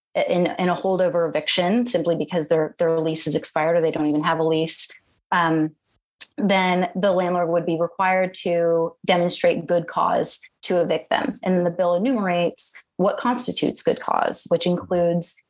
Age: 30-49